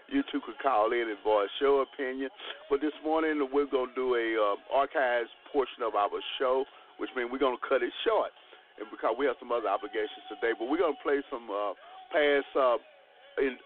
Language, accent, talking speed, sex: English, American, 215 wpm, male